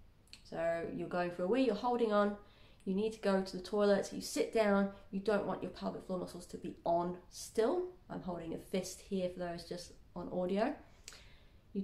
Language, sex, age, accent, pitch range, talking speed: English, female, 20-39, British, 180-225 Hz, 215 wpm